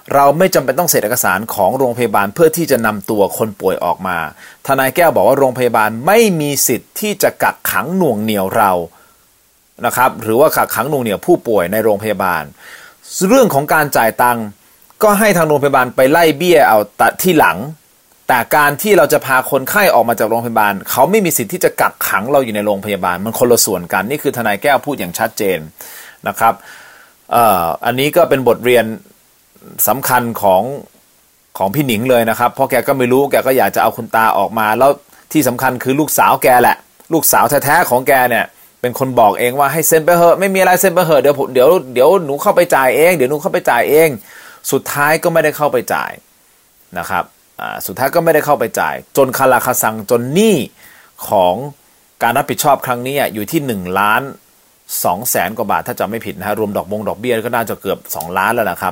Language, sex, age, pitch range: Thai, male, 30-49, 120-170 Hz